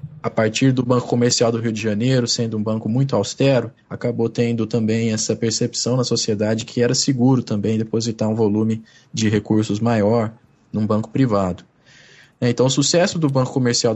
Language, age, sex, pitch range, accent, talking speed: Portuguese, 20-39, male, 110-135 Hz, Brazilian, 170 wpm